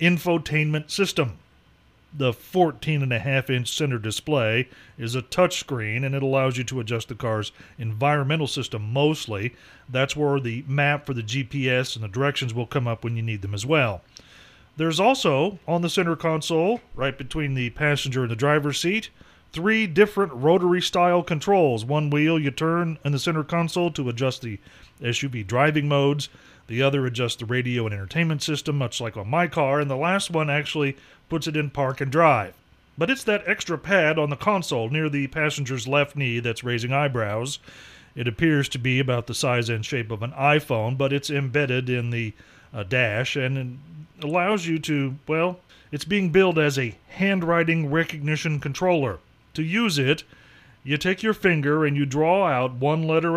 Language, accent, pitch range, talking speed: English, American, 125-160 Hz, 180 wpm